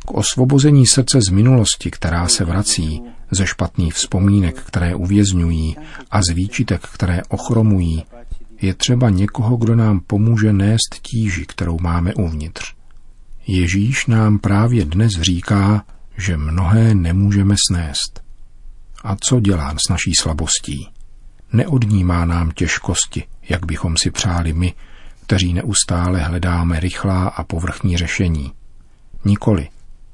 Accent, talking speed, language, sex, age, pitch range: native, 120 wpm, Czech, male, 50-69, 85-105 Hz